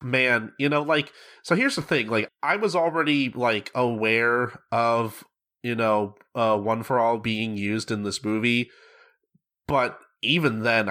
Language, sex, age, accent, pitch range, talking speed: English, male, 30-49, American, 110-155 Hz, 160 wpm